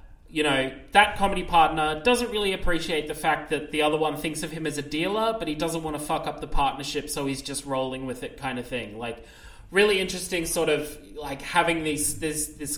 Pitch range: 145-175 Hz